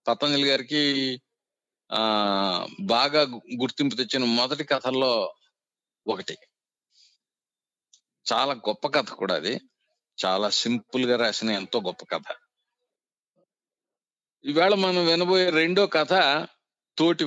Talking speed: 95 wpm